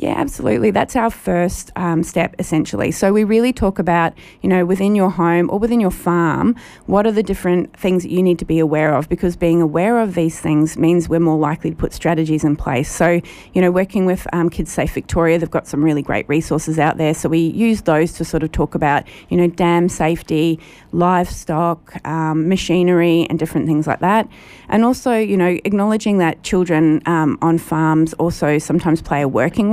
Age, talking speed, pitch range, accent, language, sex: 30-49, 205 wpm, 155-180 Hz, Australian, English, female